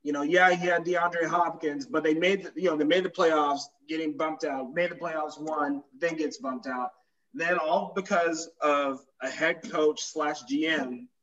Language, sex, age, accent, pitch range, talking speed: English, male, 20-39, American, 135-160 Hz, 190 wpm